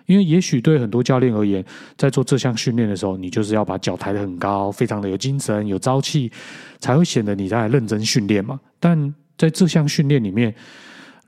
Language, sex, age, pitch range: Chinese, male, 30-49, 105-150 Hz